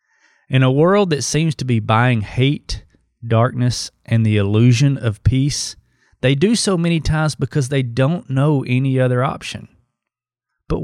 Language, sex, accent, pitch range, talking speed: English, male, American, 115-150 Hz, 155 wpm